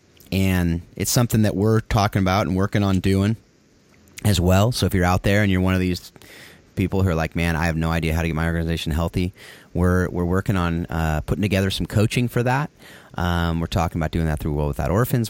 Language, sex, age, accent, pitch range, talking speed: English, male, 30-49, American, 80-100 Hz, 230 wpm